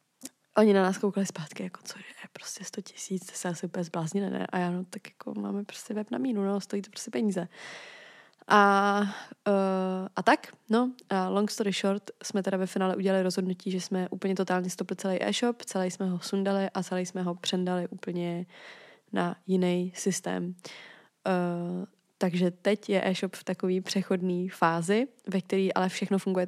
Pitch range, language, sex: 185-205 Hz, Czech, female